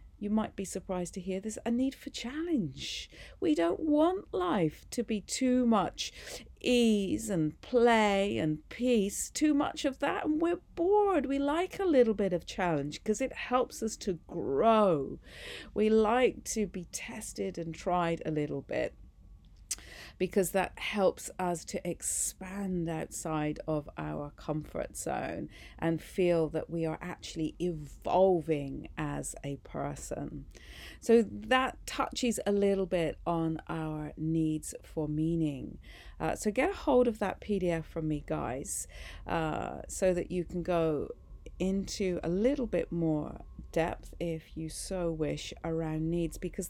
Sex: female